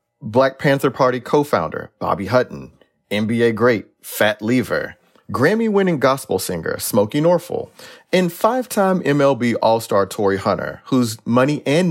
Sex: male